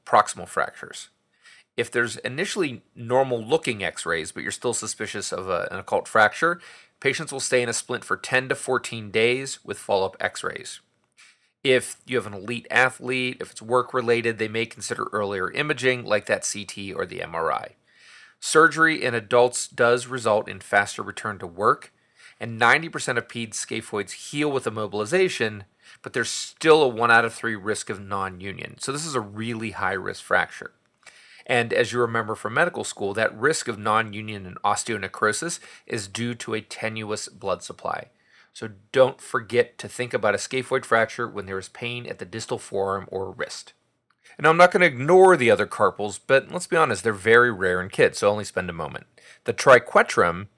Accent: American